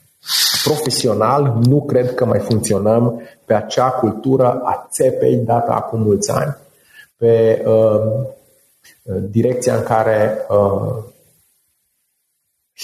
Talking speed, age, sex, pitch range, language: 100 wpm, 30-49, male, 110-145 Hz, Romanian